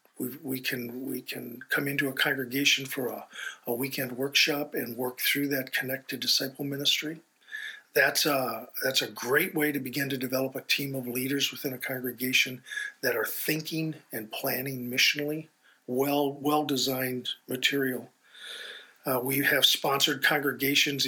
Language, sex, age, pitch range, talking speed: English, male, 50-69, 130-150 Hz, 150 wpm